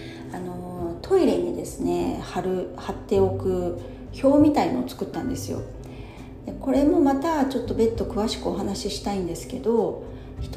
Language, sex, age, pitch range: Japanese, female, 40-59, 165-235 Hz